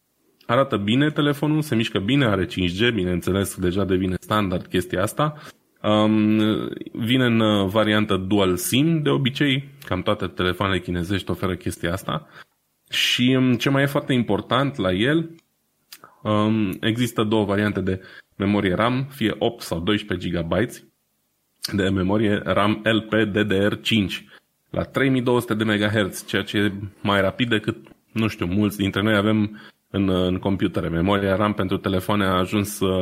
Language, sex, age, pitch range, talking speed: Romanian, male, 20-39, 90-115 Hz, 135 wpm